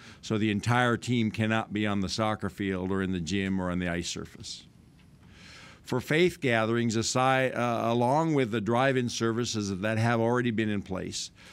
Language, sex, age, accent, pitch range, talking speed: English, male, 50-69, American, 100-120 Hz, 180 wpm